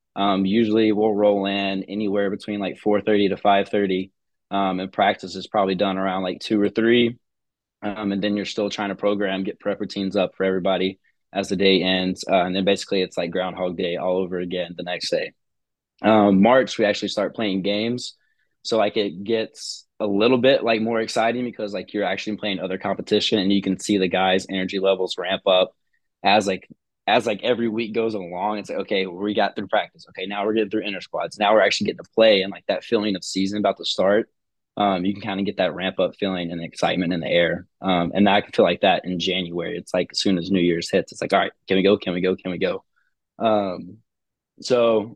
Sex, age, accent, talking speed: male, 20-39, American, 230 wpm